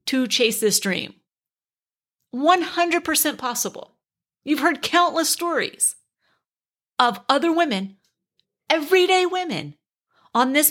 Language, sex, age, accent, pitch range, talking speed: English, female, 40-59, American, 200-300 Hz, 95 wpm